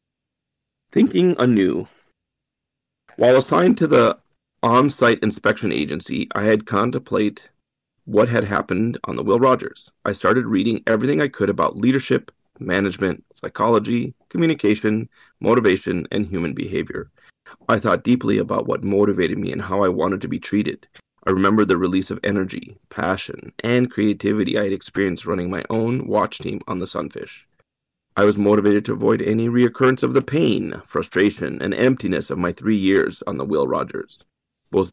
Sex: male